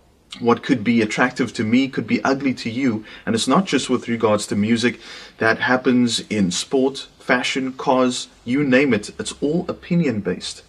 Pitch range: 110-140 Hz